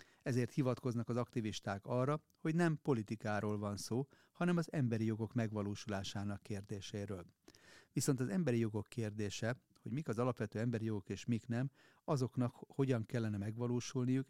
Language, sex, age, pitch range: Hungarian, male, 40-59, 105-130 Hz